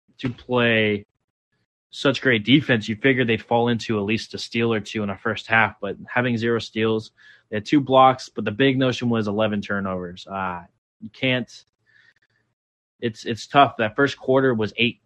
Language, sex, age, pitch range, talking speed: English, male, 20-39, 105-125 Hz, 185 wpm